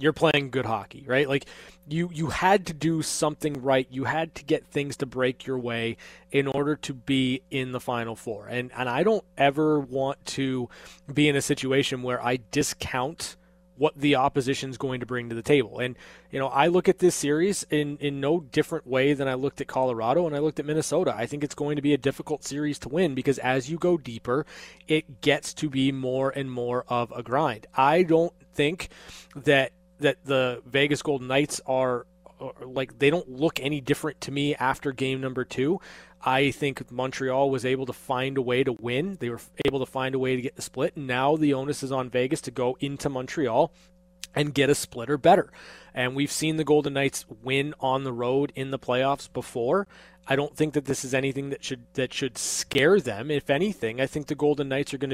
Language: English